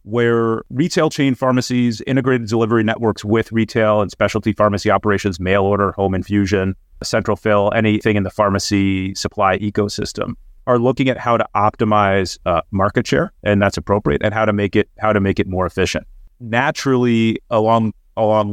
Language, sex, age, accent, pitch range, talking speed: English, male, 30-49, American, 100-115 Hz, 165 wpm